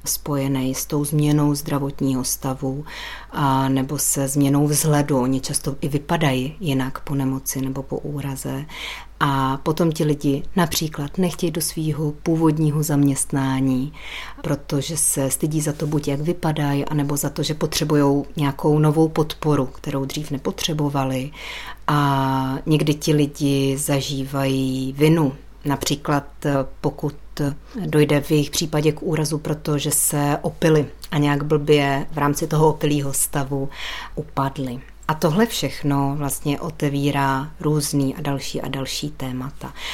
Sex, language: female, Czech